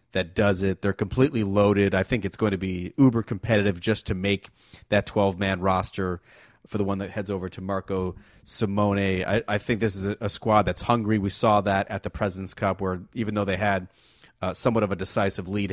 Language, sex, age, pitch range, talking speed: English, male, 30-49, 95-110 Hz, 220 wpm